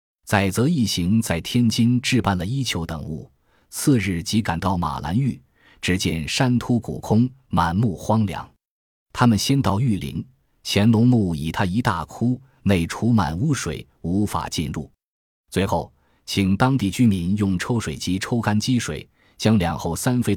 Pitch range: 85-115 Hz